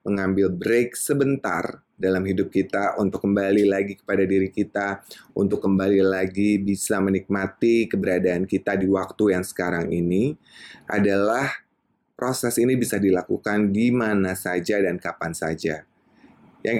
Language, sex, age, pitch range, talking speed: Indonesian, male, 20-39, 90-105 Hz, 125 wpm